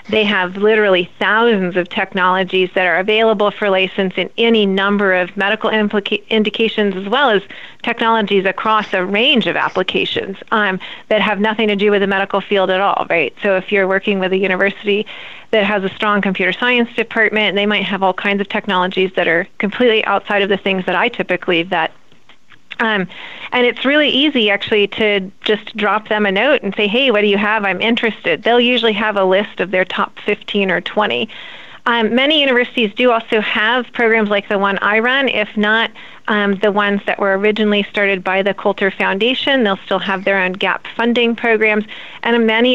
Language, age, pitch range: English, 30-49, 195-225 Hz